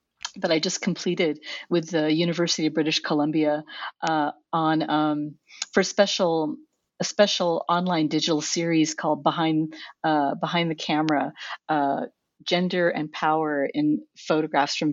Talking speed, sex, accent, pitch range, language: 135 wpm, female, American, 150-180 Hz, English